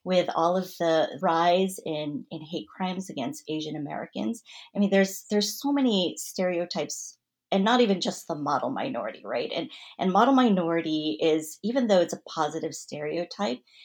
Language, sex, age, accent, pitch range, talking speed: English, female, 30-49, American, 160-210 Hz, 165 wpm